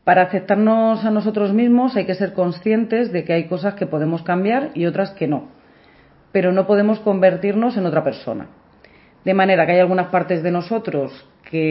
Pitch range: 165-200 Hz